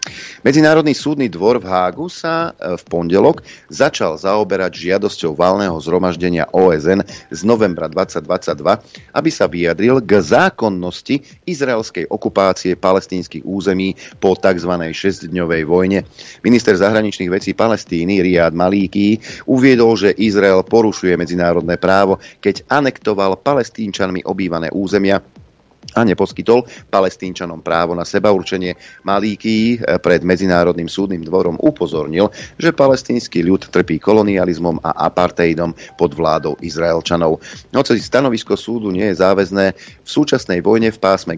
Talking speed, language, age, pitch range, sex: 115 wpm, Slovak, 40-59, 85-110 Hz, male